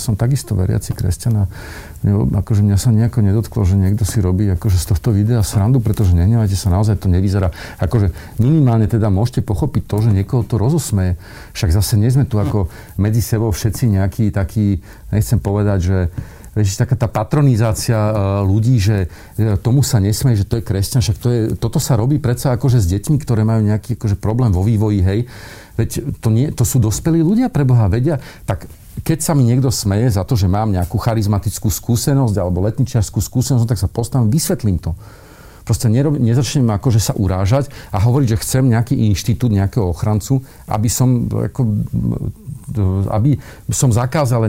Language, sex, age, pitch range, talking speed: Slovak, male, 50-69, 105-135 Hz, 170 wpm